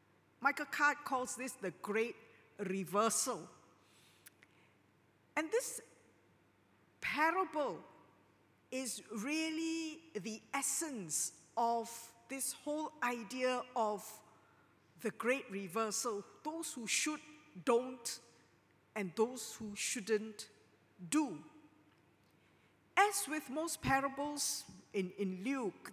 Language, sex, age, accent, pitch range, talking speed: English, female, 50-69, Malaysian, 215-305 Hz, 90 wpm